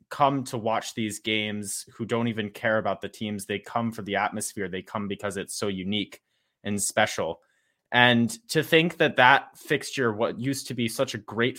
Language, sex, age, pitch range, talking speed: English, male, 20-39, 125-165 Hz, 195 wpm